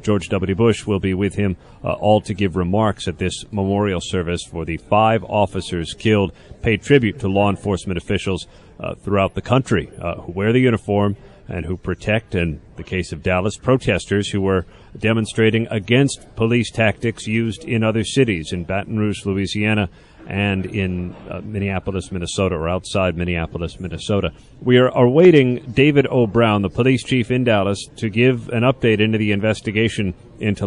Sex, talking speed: male, 170 wpm